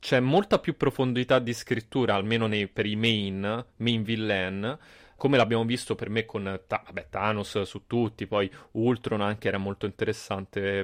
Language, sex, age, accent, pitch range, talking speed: Italian, male, 20-39, native, 100-130 Hz, 165 wpm